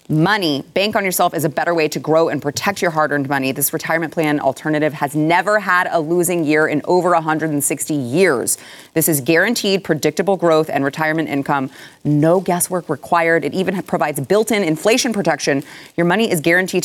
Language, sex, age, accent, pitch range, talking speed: English, female, 30-49, American, 145-180 Hz, 180 wpm